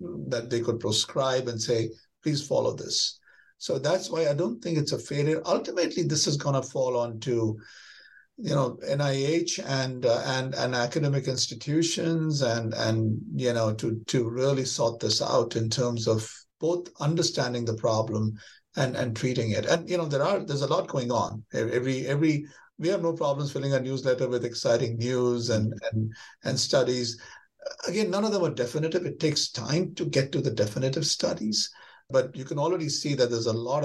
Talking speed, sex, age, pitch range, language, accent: 190 wpm, male, 60-79, 120-155 Hz, English, Indian